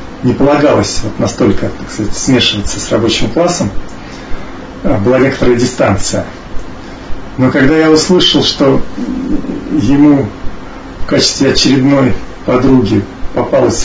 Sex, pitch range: male, 125-175 Hz